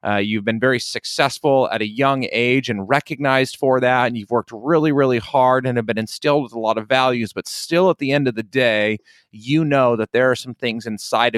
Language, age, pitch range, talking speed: English, 30-49, 110-135 Hz, 230 wpm